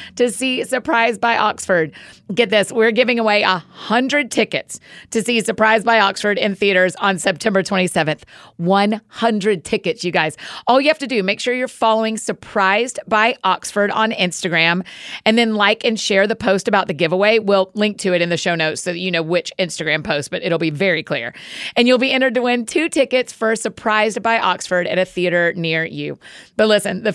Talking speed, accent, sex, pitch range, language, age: 205 wpm, American, female, 180-225 Hz, English, 30-49